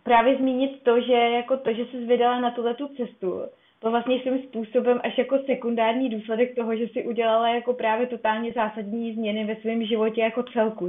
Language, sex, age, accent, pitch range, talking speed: Czech, female, 20-39, native, 205-235 Hz, 185 wpm